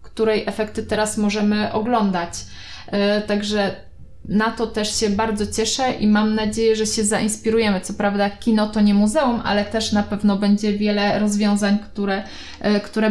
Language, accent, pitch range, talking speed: Polish, native, 205-240 Hz, 150 wpm